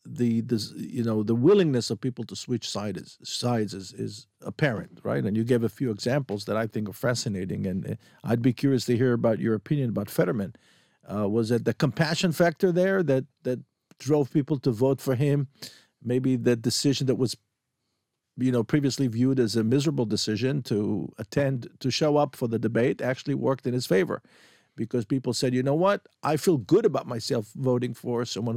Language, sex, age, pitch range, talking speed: English, male, 50-69, 115-145 Hz, 195 wpm